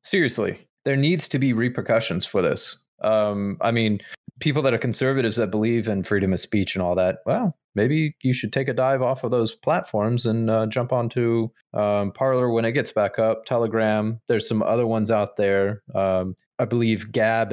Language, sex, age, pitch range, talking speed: English, male, 30-49, 95-115 Hz, 195 wpm